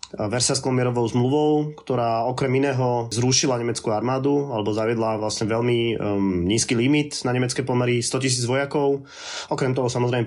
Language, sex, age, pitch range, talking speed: Slovak, male, 20-39, 120-135 Hz, 135 wpm